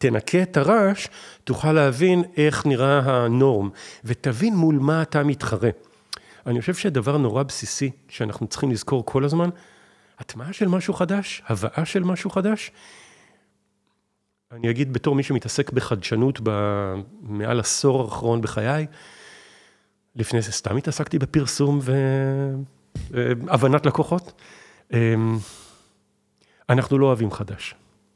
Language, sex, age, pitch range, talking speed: Hebrew, male, 40-59, 115-150 Hz, 110 wpm